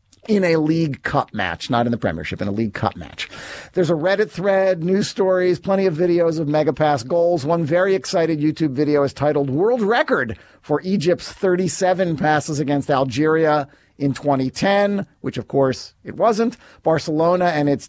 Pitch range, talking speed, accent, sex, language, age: 140-180 Hz, 175 wpm, American, male, English, 40-59